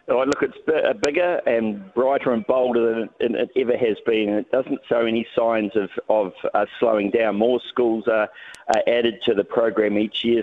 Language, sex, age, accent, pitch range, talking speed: English, male, 40-59, Australian, 110-145 Hz, 185 wpm